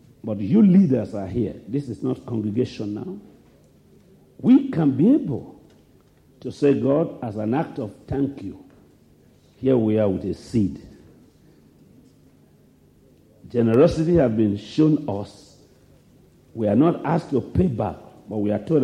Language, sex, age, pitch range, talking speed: English, male, 50-69, 120-165 Hz, 145 wpm